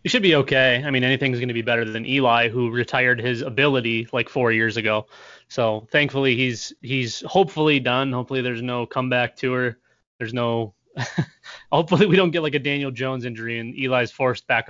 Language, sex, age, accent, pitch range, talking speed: English, male, 20-39, American, 125-155 Hz, 190 wpm